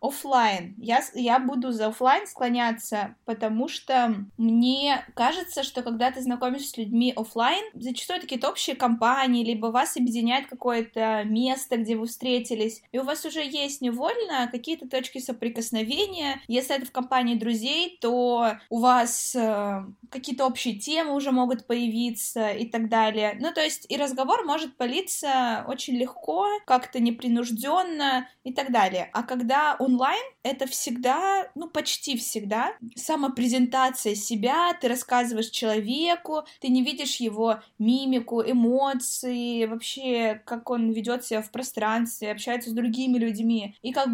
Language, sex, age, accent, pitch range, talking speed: Russian, female, 20-39, native, 230-270 Hz, 135 wpm